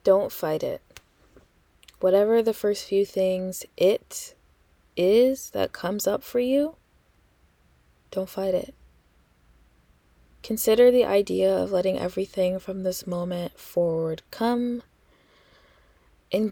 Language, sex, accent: English, female, American